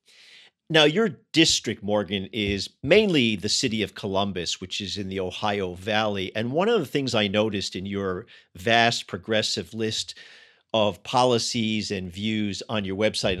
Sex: male